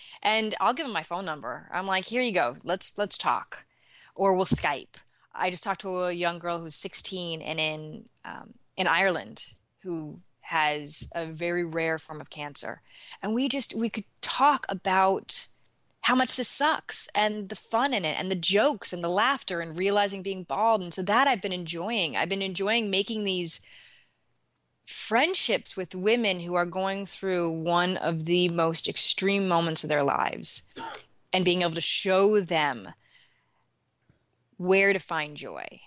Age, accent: 20-39, American